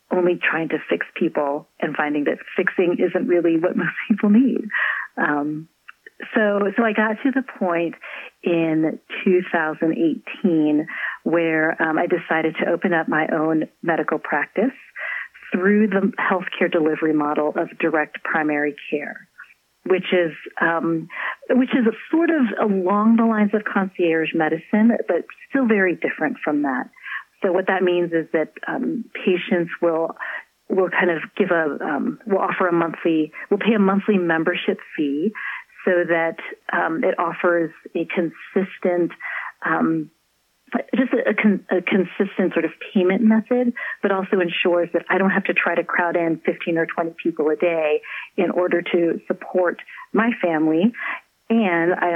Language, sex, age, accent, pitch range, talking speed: English, female, 40-59, American, 165-210 Hz, 155 wpm